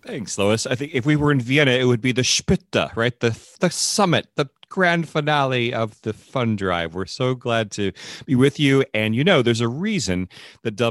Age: 40-59